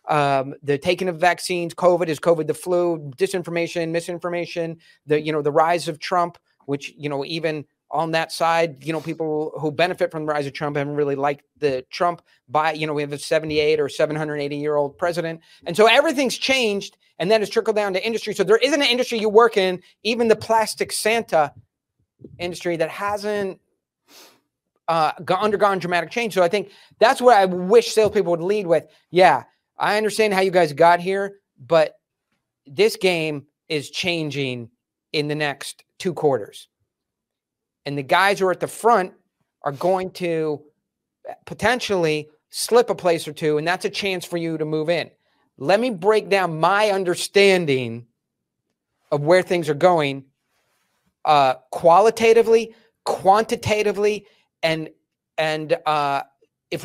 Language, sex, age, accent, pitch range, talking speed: English, male, 30-49, American, 155-200 Hz, 165 wpm